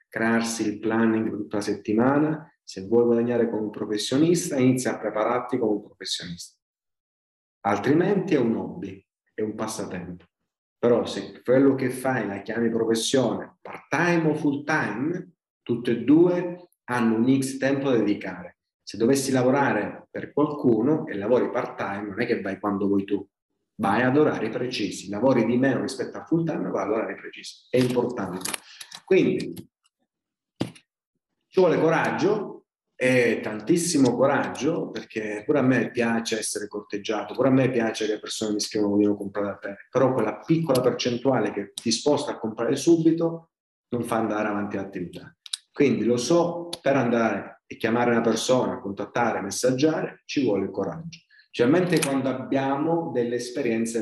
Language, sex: Italian, male